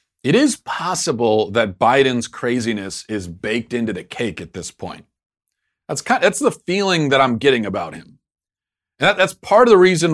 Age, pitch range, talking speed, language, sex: 40-59, 115-140 Hz, 190 wpm, English, male